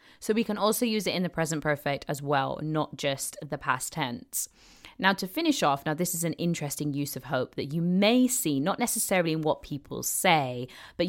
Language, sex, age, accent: English, female, 20-39, British